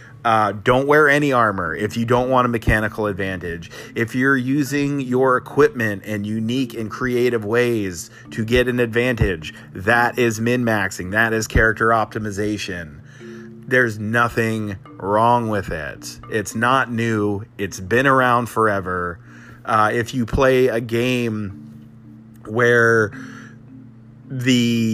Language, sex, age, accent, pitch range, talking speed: English, male, 30-49, American, 105-120 Hz, 130 wpm